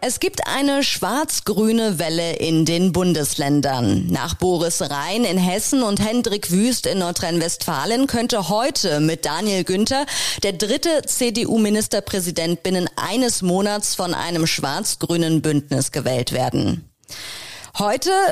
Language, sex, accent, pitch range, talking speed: German, female, German, 165-225 Hz, 120 wpm